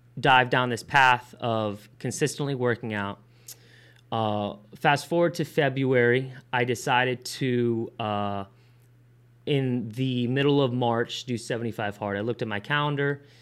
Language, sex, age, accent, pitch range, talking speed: English, male, 20-39, American, 115-130 Hz, 135 wpm